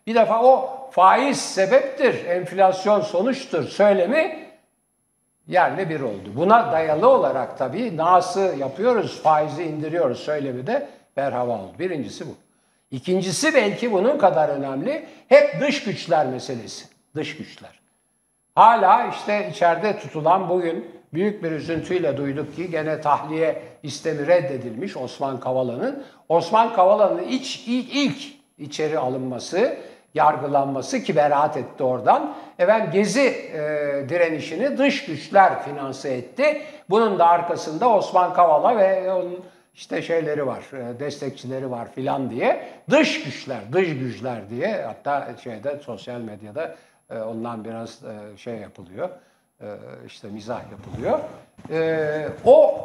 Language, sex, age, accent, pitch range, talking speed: Turkish, male, 60-79, native, 140-220 Hz, 125 wpm